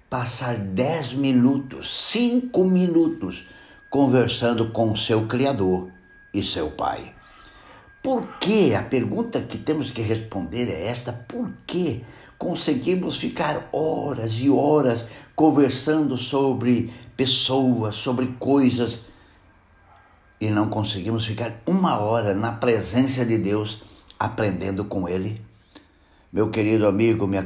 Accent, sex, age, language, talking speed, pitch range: Brazilian, male, 60-79, Portuguese, 115 wpm, 95-125 Hz